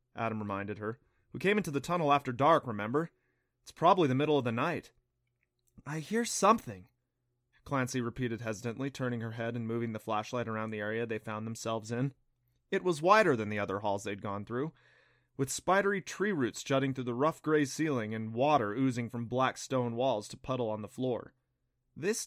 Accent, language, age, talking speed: American, English, 20-39, 190 wpm